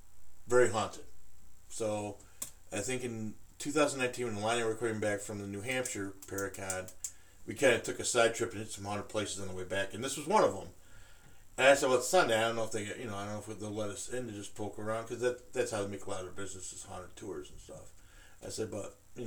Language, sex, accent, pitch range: English, male, American, 95-110 Hz